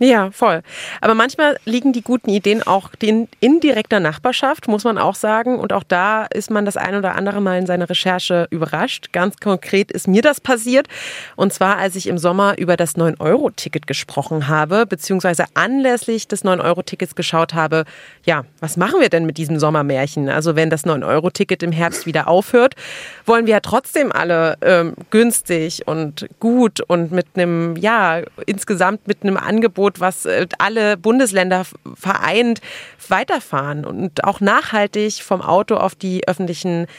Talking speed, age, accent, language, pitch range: 160 wpm, 30-49, German, German, 170-215 Hz